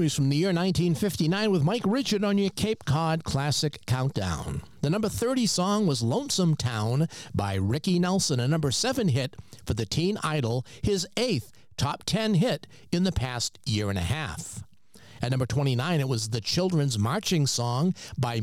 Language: English